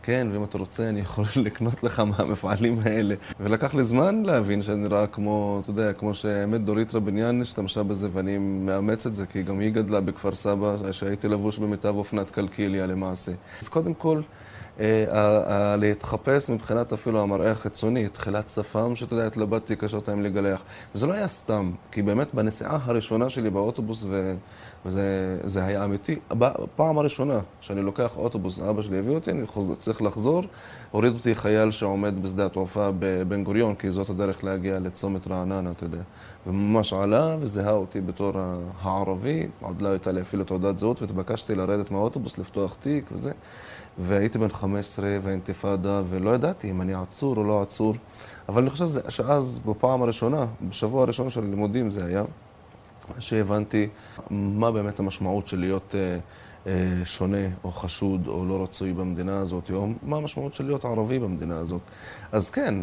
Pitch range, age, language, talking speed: 95-115 Hz, 20-39, Hebrew, 165 wpm